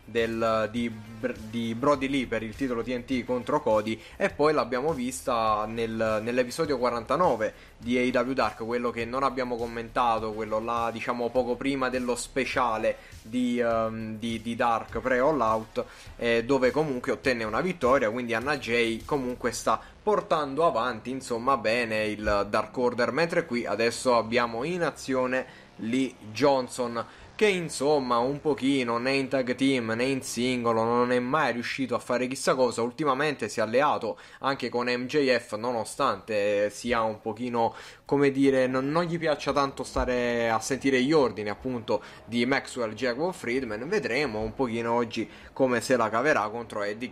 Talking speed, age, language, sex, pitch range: 155 wpm, 20-39, Italian, male, 115-135 Hz